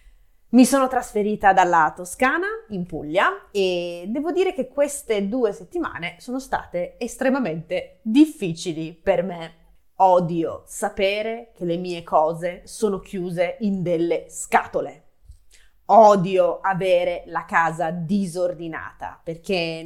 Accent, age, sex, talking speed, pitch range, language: native, 20-39, female, 110 wpm, 175-280 Hz, Italian